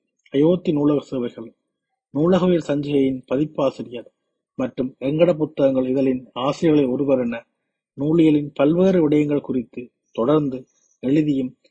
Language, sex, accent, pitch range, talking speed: Tamil, male, native, 125-160 Hz, 90 wpm